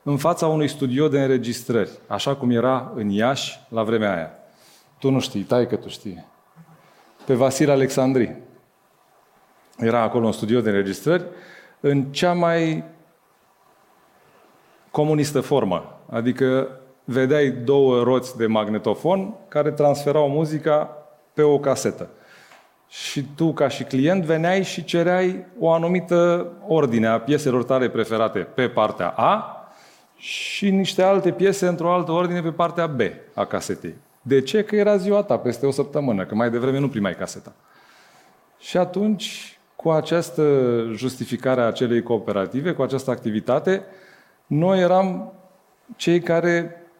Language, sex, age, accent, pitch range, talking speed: Romanian, male, 30-49, native, 130-170 Hz, 135 wpm